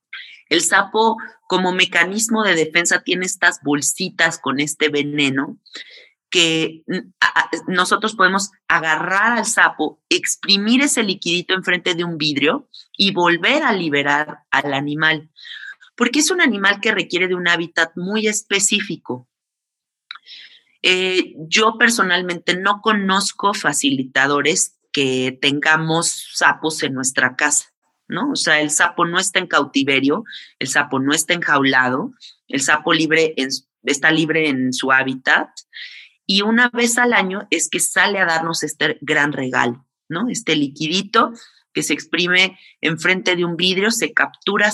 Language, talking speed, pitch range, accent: Spanish, 140 wpm, 150-200 Hz, Mexican